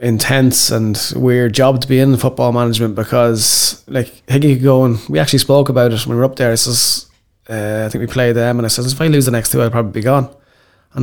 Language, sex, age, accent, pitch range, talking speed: English, male, 20-39, Irish, 115-130 Hz, 255 wpm